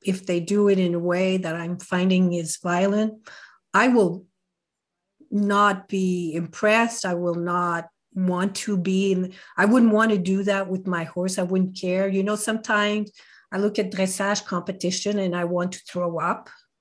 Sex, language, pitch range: female, English, 180-215 Hz